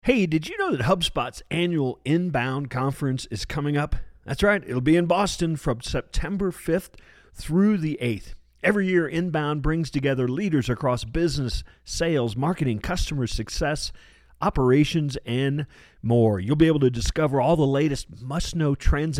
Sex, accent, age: male, American, 40-59